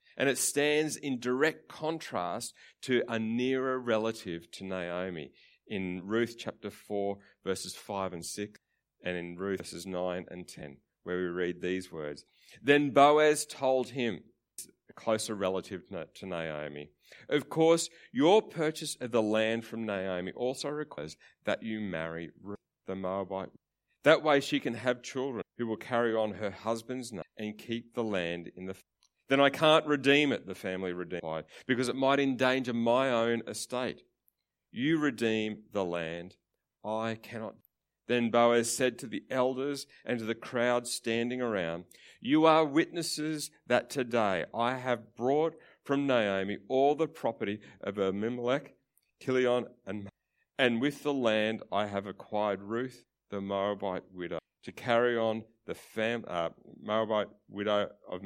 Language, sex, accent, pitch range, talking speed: English, male, Australian, 95-130 Hz, 155 wpm